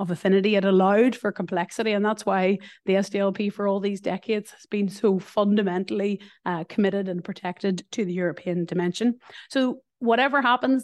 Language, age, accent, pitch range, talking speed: English, 30-49, Irish, 195-225 Hz, 165 wpm